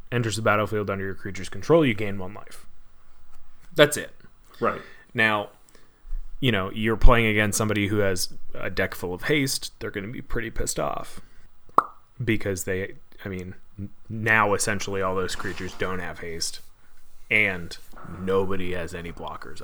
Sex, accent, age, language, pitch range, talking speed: male, American, 20-39, English, 95-115 Hz, 160 wpm